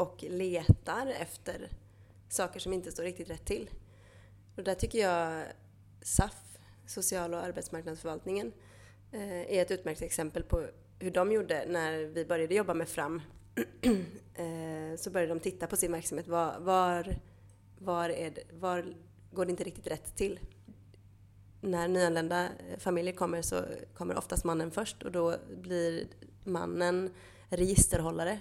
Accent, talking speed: native, 140 wpm